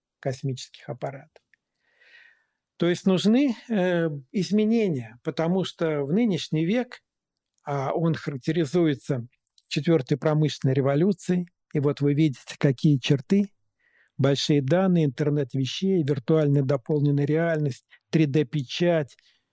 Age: 50-69